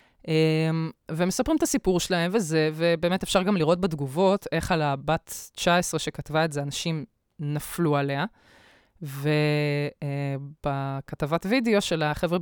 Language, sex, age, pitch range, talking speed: Hebrew, female, 20-39, 150-185 Hz, 125 wpm